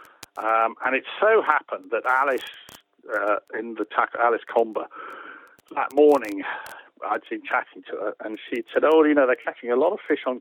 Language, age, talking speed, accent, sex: English, 50-69, 190 wpm, British, male